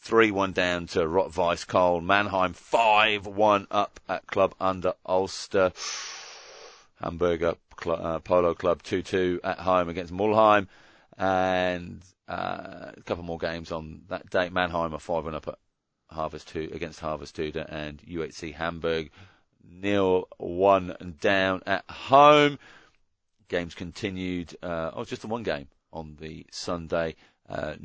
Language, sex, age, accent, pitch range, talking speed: English, male, 40-59, British, 85-95 Hz, 145 wpm